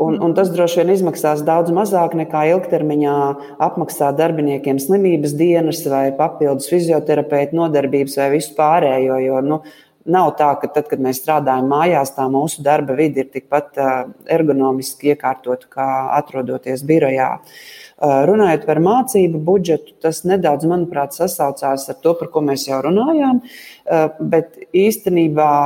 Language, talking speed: English, 140 wpm